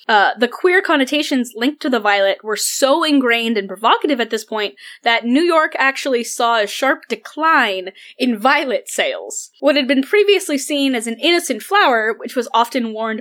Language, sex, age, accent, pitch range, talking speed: English, female, 10-29, American, 205-280 Hz, 180 wpm